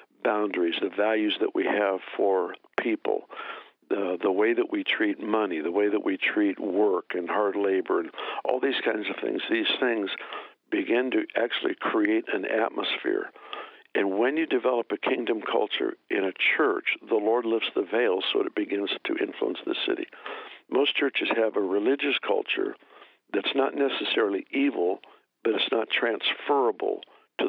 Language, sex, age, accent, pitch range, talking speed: English, male, 60-79, American, 335-430 Hz, 165 wpm